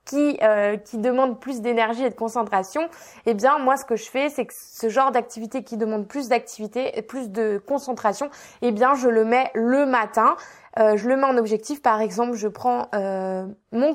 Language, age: French, 20-39